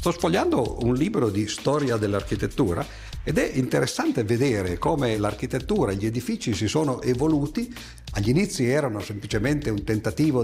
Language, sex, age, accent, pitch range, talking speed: Italian, male, 50-69, native, 105-135 Hz, 145 wpm